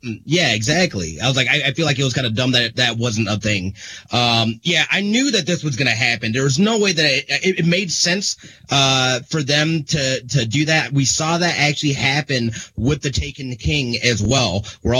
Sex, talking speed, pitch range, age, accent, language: male, 235 wpm, 115-150 Hz, 30-49, American, English